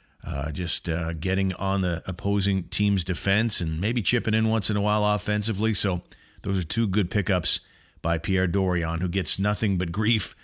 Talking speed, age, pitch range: 185 wpm, 40-59, 90-110 Hz